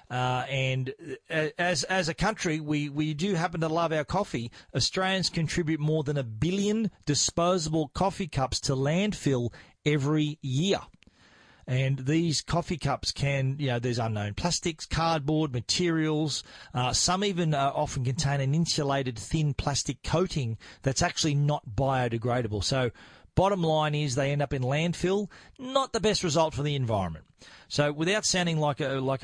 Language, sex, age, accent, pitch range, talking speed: English, male, 40-59, Australian, 130-165 Hz, 155 wpm